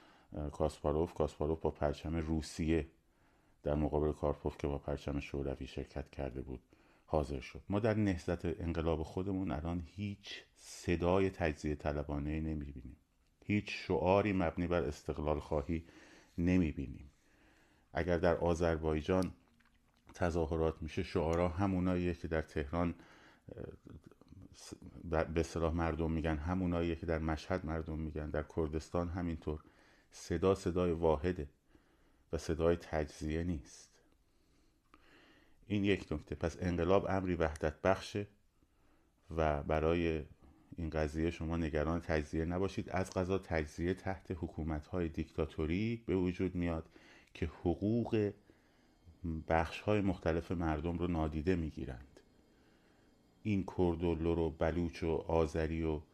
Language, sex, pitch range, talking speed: Persian, male, 80-90 Hz, 115 wpm